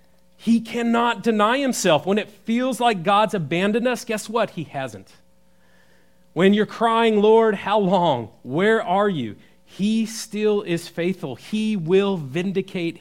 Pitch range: 115-175 Hz